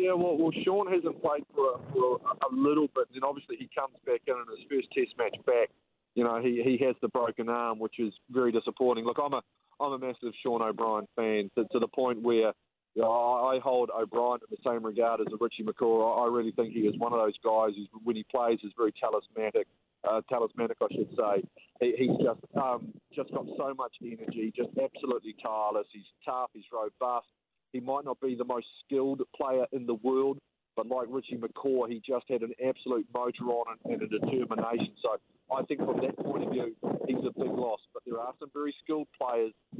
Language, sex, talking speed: English, male, 225 wpm